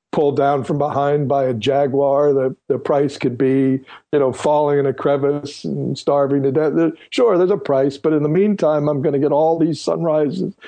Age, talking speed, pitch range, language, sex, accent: 60-79, 210 wpm, 130-165 Hz, English, male, American